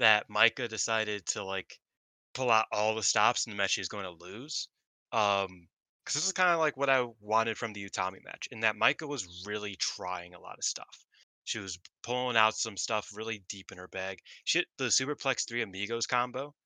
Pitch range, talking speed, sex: 95-120 Hz, 215 wpm, male